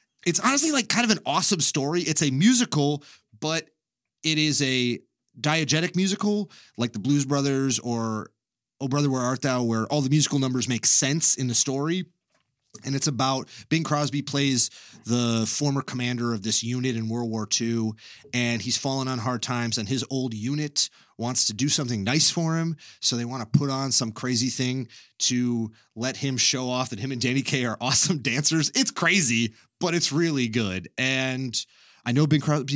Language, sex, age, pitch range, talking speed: English, male, 30-49, 110-140 Hz, 190 wpm